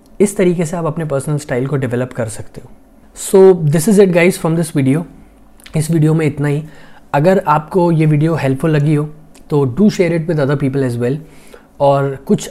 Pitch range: 135-160 Hz